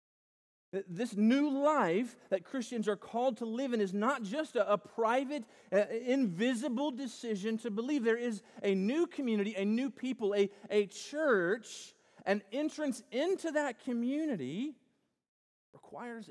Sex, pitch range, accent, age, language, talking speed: male, 195-260 Hz, American, 40-59, English, 140 wpm